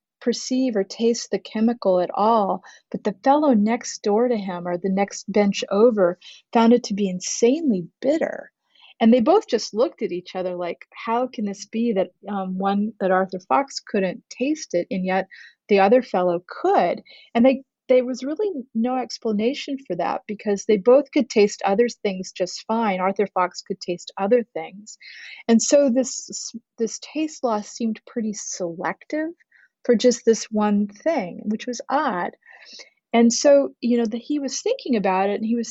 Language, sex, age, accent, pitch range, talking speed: English, female, 30-49, American, 200-255 Hz, 180 wpm